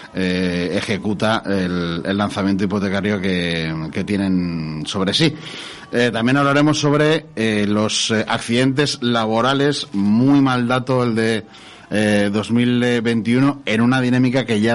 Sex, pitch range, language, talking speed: male, 105-120 Hz, Spanish, 130 wpm